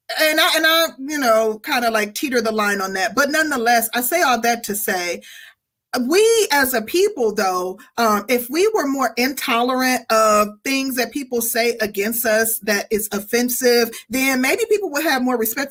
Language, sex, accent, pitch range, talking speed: English, female, American, 215-280 Hz, 190 wpm